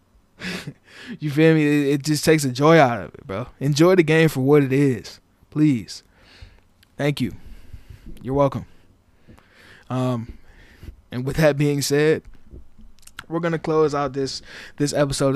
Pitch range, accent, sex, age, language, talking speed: 120-140 Hz, American, male, 20-39, English, 145 wpm